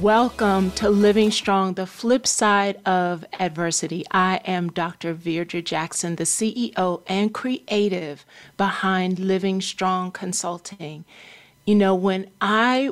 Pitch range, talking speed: 185-220 Hz, 120 wpm